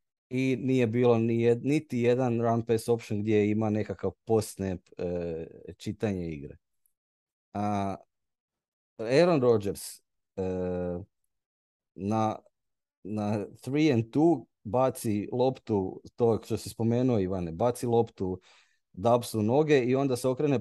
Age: 30-49